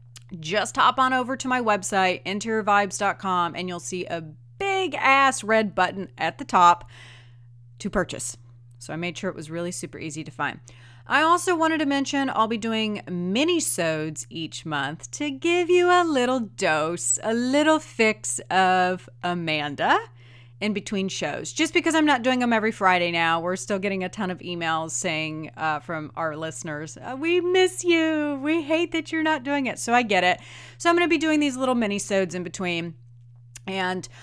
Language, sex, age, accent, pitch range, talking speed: English, female, 30-49, American, 155-240 Hz, 185 wpm